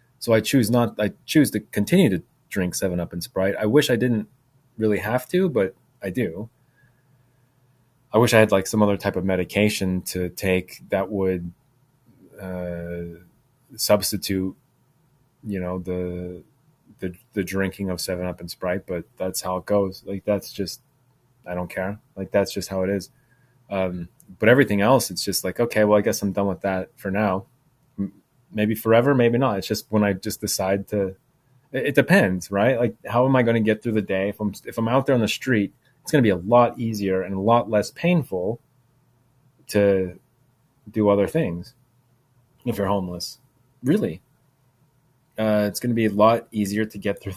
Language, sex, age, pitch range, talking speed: English, male, 30-49, 95-125 Hz, 190 wpm